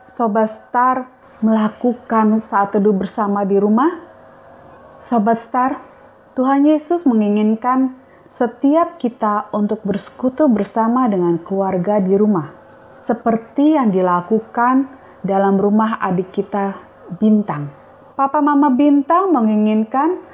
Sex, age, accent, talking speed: female, 30-49, native, 100 wpm